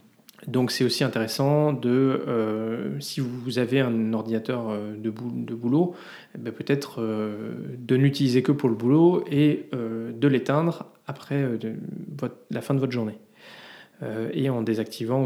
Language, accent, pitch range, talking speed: French, French, 115-140 Hz, 125 wpm